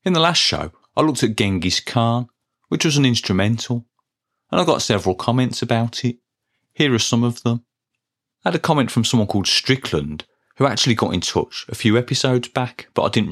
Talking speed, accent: 205 wpm, British